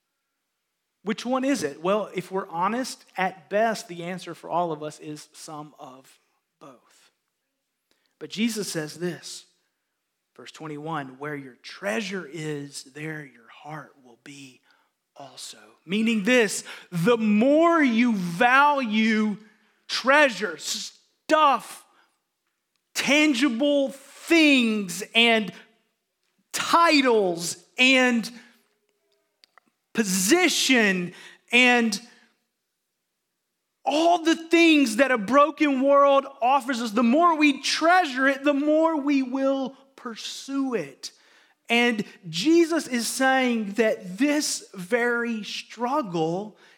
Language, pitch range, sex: English, 185-260 Hz, male